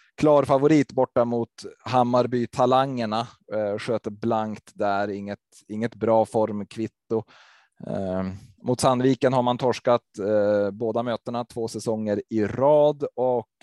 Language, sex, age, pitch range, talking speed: Swedish, male, 20-39, 105-125 Hz, 105 wpm